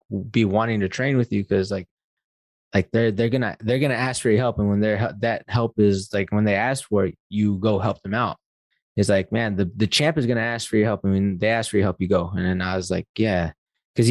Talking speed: 265 wpm